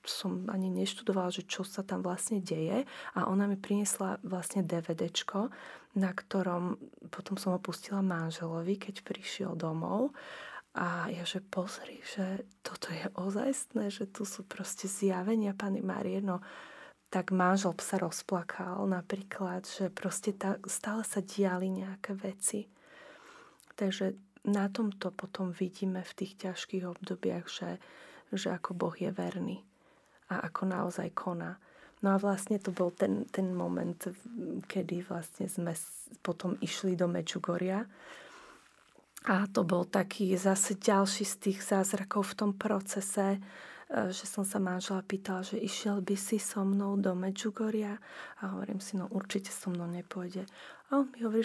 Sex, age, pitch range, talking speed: female, 20-39, 185-205 Hz, 140 wpm